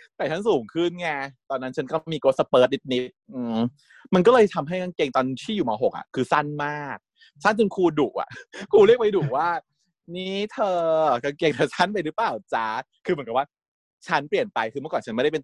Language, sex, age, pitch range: Thai, male, 20-39, 140-210 Hz